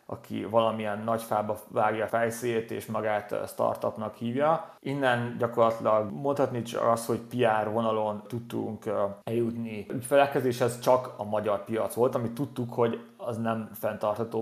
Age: 30-49